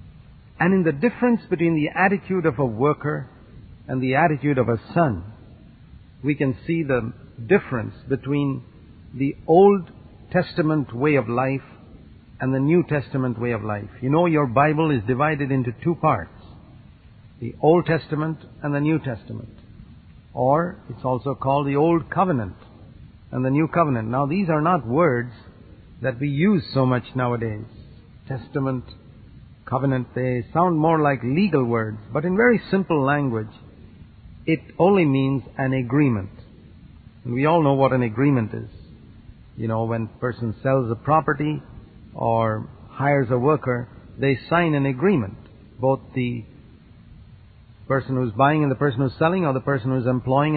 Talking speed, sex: 155 wpm, male